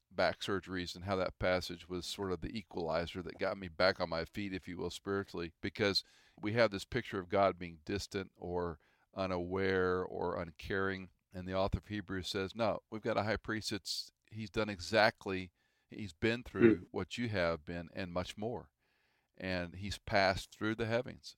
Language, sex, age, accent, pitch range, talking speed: English, male, 50-69, American, 90-100 Hz, 185 wpm